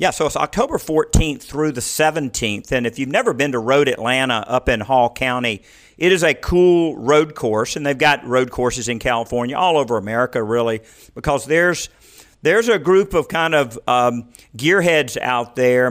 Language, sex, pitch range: English, male, 120-150 Hz